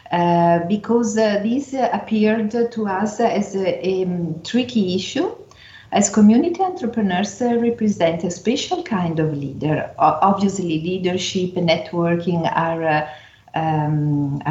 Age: 50-69